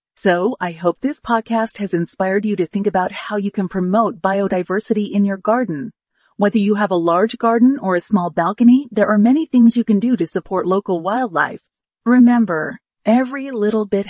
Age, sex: 40-59, female